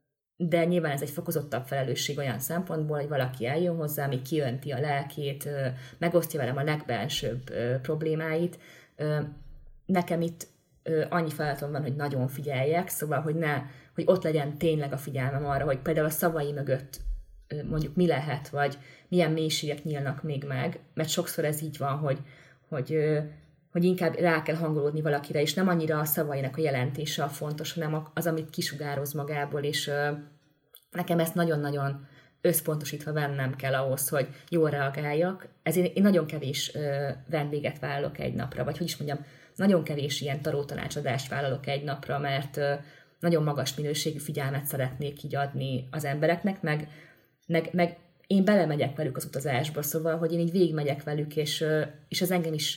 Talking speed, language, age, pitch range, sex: 160 wpm, Hungarian, 20-39, 140-160 Hz, female